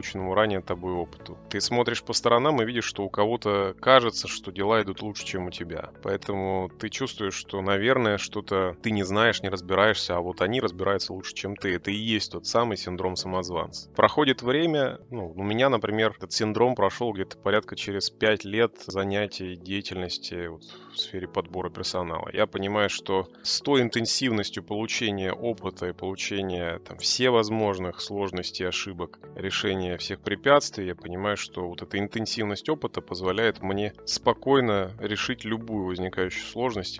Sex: male